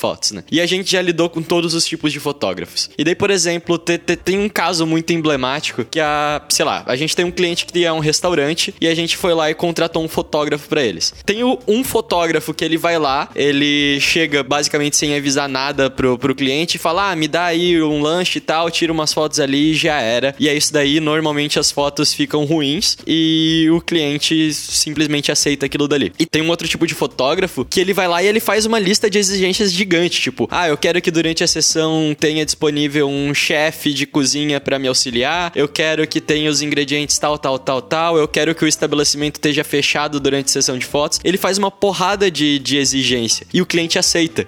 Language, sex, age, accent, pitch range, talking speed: Portuguese, male, 20-39, Brazilian, 145-170 Hz, 220 wpm